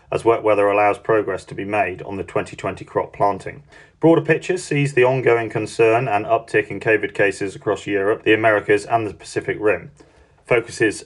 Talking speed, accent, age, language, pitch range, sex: 180 wpm, British, 40-59, English, 105-135 Hz, male